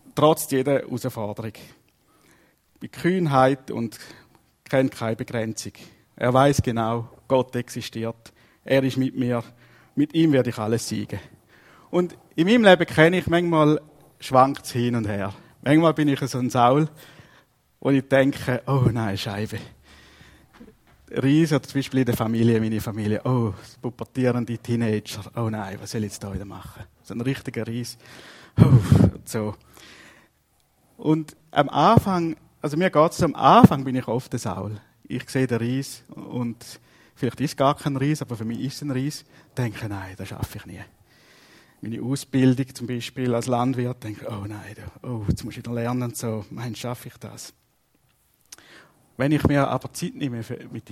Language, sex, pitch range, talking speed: German, male, 115-140 Hz, 160 wpm